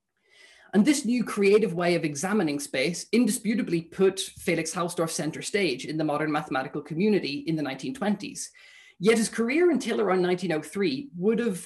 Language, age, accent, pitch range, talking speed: English, 20-39, Irish, 160-205 Hz, 155 wpm